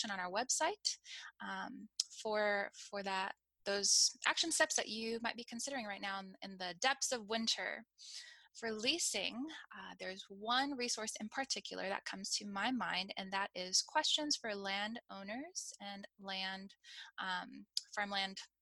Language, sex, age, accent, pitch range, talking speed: English, female, 10-29, American, 190-255 Hz, 145 wpm